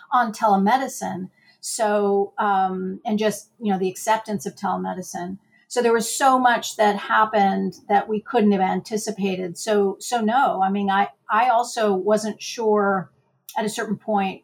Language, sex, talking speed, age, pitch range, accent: English, female, 160 wpm, 50-69, 195-230 Hz, American